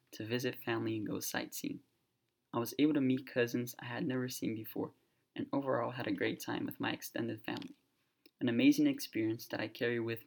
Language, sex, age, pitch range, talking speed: English, male, 20-39, 115-150 Hz, 200 wpm